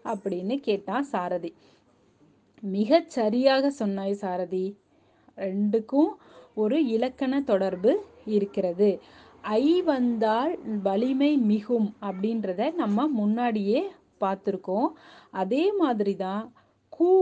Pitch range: 195-270 Hz